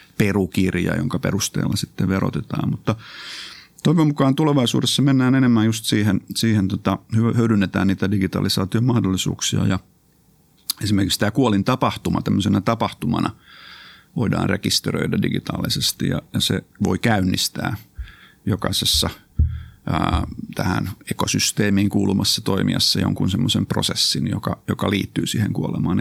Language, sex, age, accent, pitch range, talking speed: Finnish, male, 50-69, native, 95-115 Hz, 115 wpm